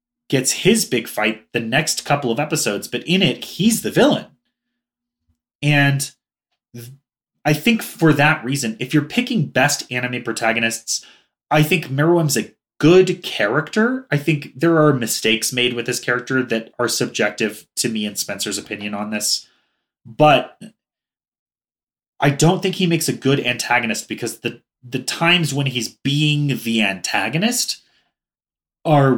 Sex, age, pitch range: male, 30-49, 110-155 Hz